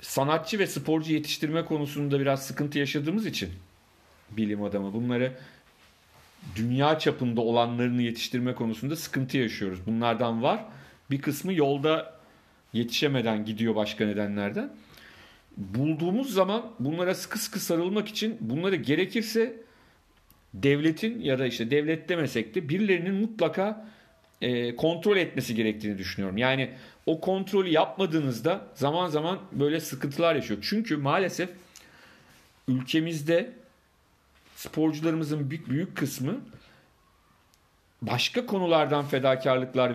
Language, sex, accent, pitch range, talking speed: Turkish, male, native, 115-165 Hz, 105 wpm